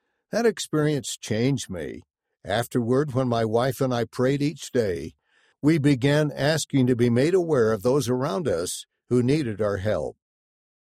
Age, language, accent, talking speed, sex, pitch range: 60-79, English, American, 155 wpm, male, 115-150 Hz